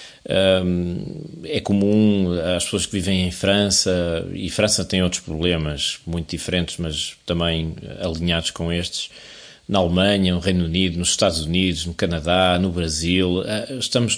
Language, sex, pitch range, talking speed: Portuguese, male, 85-100 Hz, 140 wpm